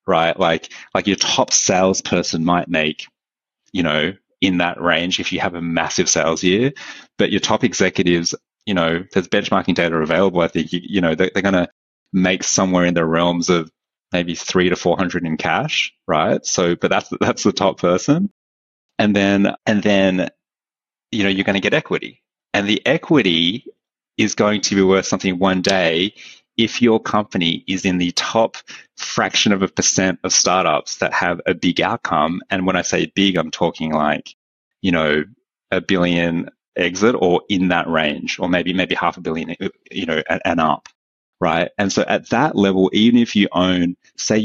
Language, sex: English, male